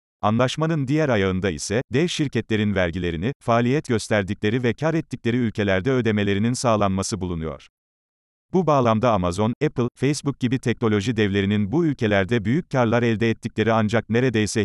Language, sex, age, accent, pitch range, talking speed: Turkish, male, 40-59, native, 100-125 Hz, 130 wpm